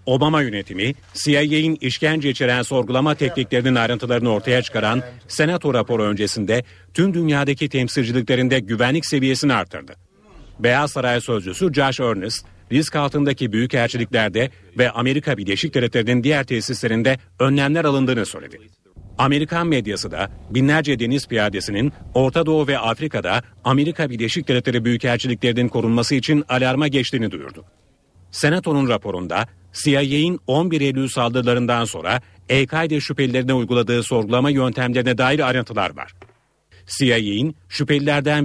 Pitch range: 115-140 Hz